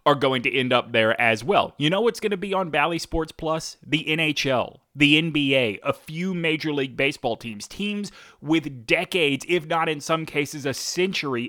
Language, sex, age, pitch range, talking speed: English, male, 30-49, 120-160 Hz, 200 wpm